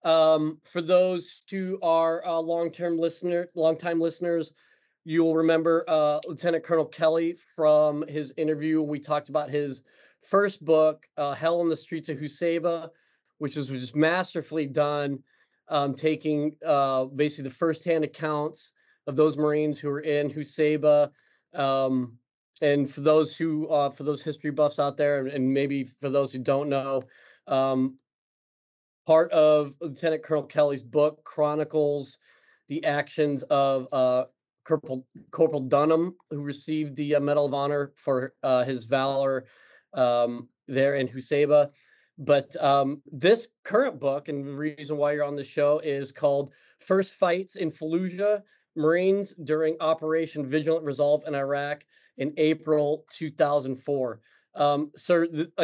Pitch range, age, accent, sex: 140-160 Hz, 30-49, American, male